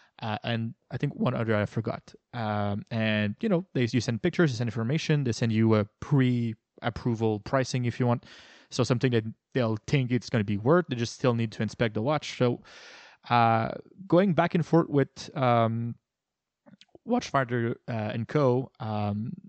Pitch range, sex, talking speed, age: 115-150 Hz, male, 180 wpm, 20-39